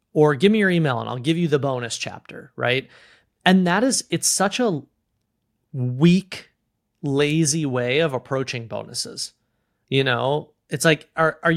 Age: 30-49